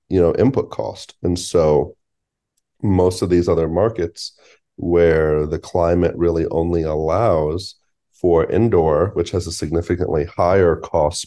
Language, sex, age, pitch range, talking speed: English, male, 30-49, 75-85 Hz, 135 wpm